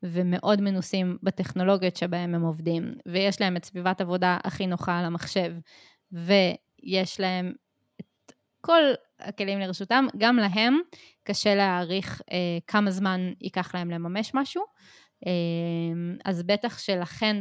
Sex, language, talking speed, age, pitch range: female, Hebrew, 125 wpm, 20-39, 175-205 Hz